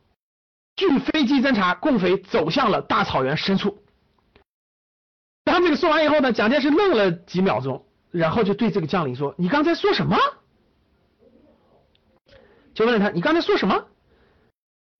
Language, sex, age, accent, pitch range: Chinese, male, 50-69, native, 210-335 Hz